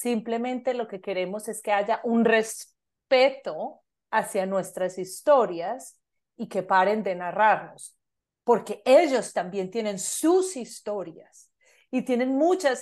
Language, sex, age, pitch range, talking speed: Spanish, female, 40-59, 200-255 Hz, 120 wpm